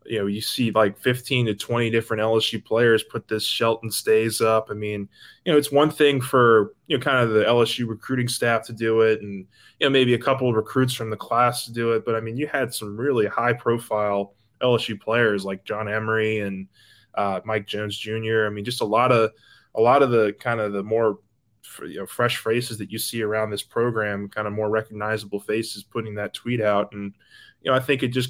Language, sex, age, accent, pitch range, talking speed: English, male, 20-39, American, 105-115 Hz, 225 wpm